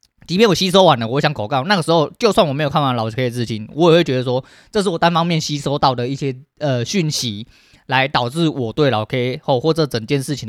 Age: 20-39